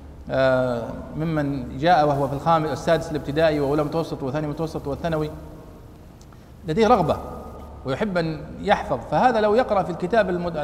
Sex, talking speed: male, 125 wpm